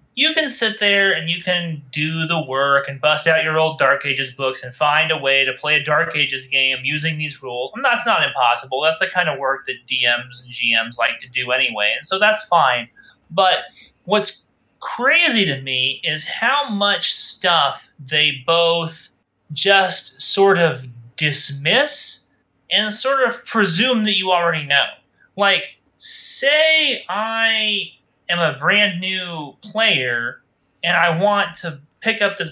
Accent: American